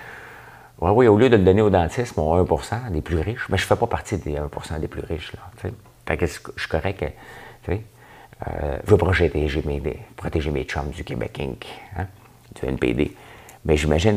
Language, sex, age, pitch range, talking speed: French, male, 50-69, 80-105 Hz, 205 wpm